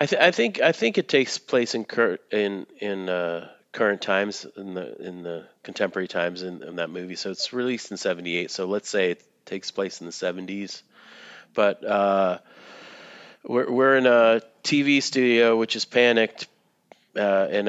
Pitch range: 85-100 Hz